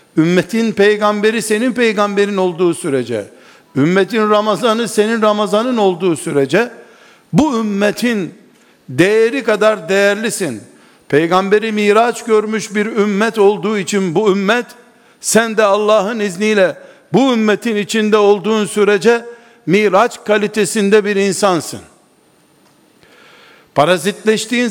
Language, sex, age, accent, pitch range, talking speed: Turkish, male, 60-79, native, 195-225 Hz, 95 wpm